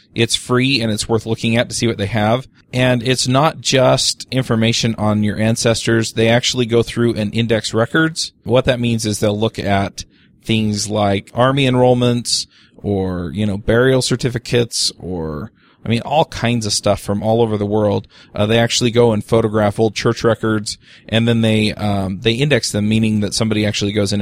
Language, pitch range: English, 105-120 Hz